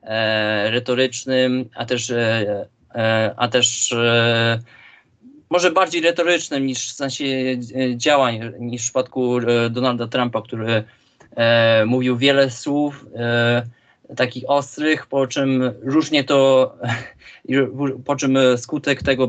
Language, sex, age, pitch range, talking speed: Polish, male, 20-39, 115-130 Hz, 95 wpm